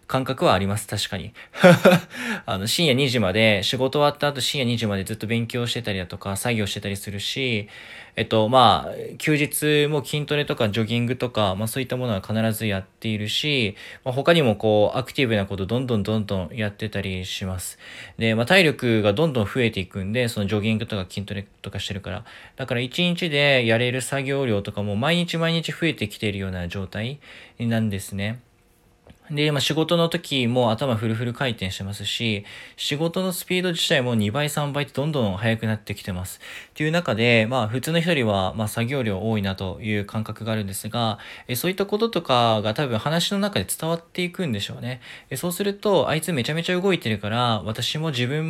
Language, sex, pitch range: Japanese, male, 105-150 Hz